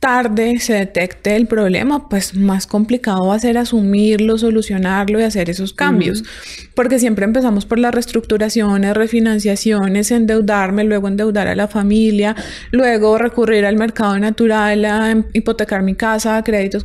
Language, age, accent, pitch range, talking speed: Spanish, 20-39, Colombian, 195-225 Hz, 140 wpm